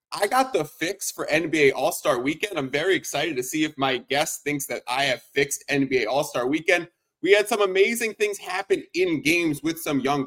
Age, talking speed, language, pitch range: 30-49, 205 wpm, English, 155-215 Hz